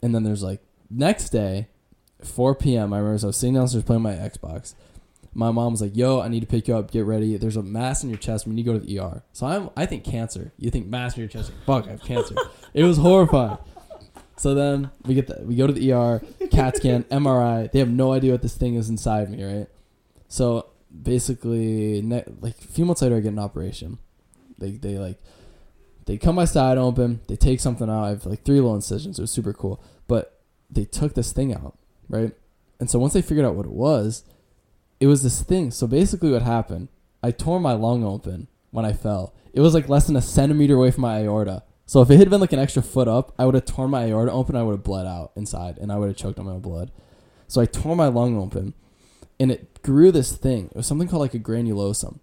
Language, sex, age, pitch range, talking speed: English, male, 10-29, 105-130 Hz, 245 wpm